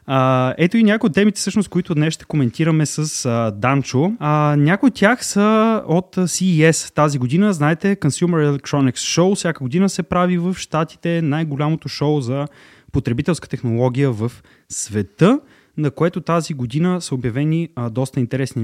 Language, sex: Bulgarian, male